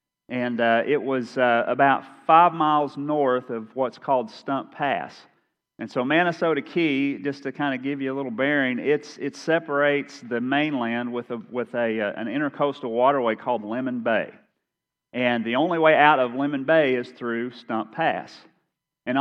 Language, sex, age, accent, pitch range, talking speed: English, male, 40-59, American, 115-145 Hz, 175 wpm